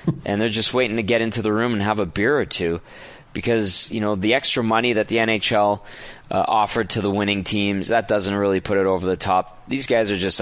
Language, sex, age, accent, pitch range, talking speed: English, male, 20-39, American, 100-120 Hz, 240 wpm